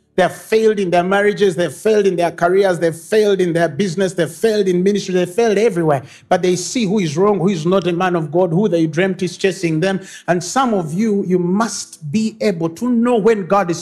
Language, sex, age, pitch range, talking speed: English, male, 50-69, 155-185 Hz, 255 wpm